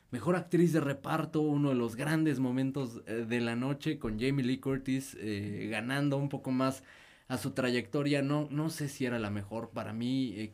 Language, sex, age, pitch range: Spanish, male, 20-39, 110-140 Hz